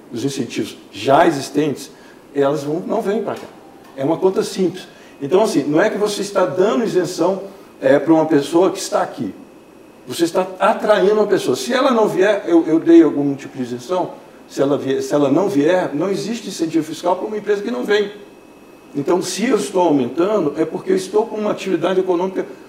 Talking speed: 190 wpm